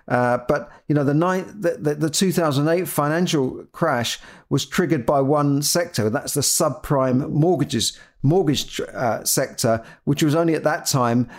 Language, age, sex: English, 50-69, male